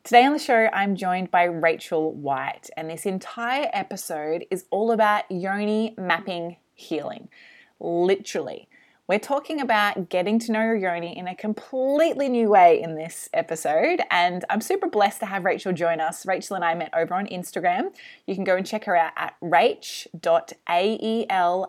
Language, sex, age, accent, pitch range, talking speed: English, female, 20-39, Australian, 175-225 Hz, 165 wpm